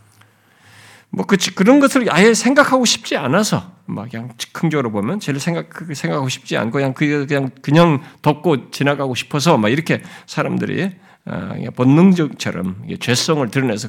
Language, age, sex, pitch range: Korean, 50-69, male, 125-185 Hz